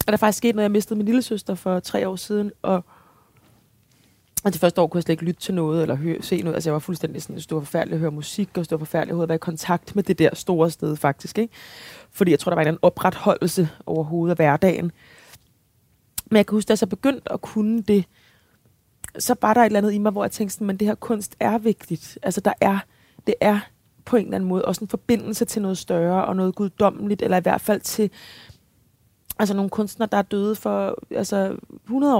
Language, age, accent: Danish, 20-39, native